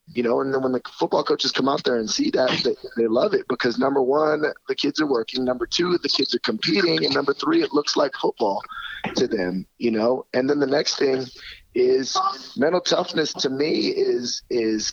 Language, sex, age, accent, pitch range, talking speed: English, male, 30-49, American, 115-140 Hz, 215 wpm